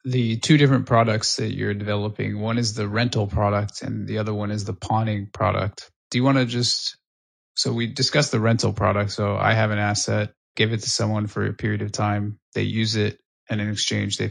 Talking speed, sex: 220 wpm, male